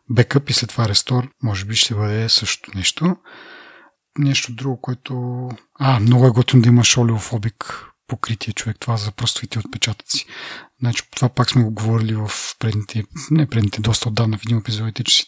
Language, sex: Bulgarian, male